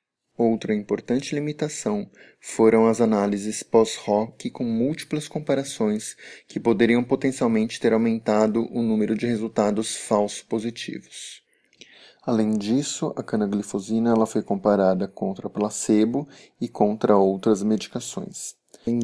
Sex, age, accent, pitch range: male, 20-39, Brazilian, 105-120 Hz